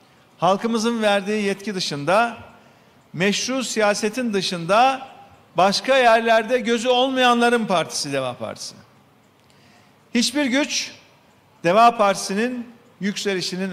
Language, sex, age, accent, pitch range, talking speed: Turkish, male, 50-69, native, 185-240 Hz, 85 wpm